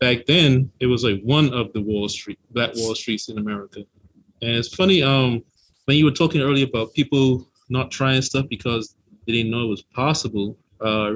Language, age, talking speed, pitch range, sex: English, 20-39, 205 wpm, 115-140 Hz, male